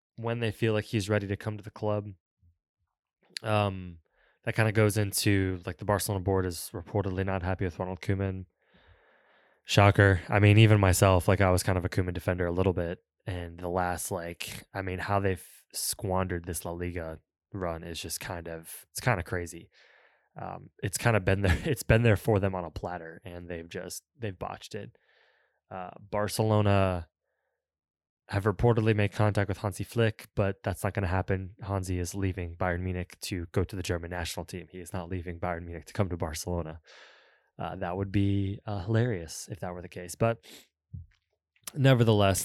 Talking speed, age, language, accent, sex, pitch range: 190 wpm, 20-39, English, American, male, 90-105 Hz